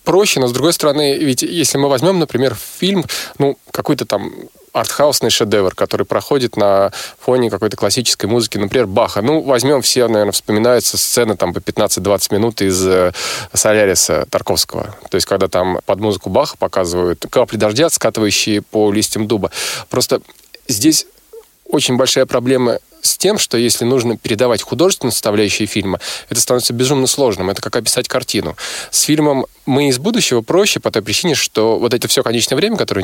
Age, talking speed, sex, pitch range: 20-39, 165 wpm, male, 100-130 Hz